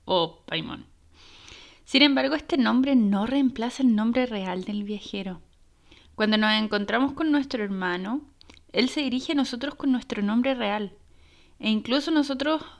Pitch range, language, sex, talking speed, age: 210-275 Hz, Spanish, female, 145 wpm, 20-39